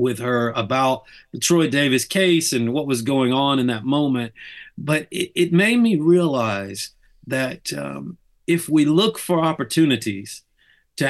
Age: 50-69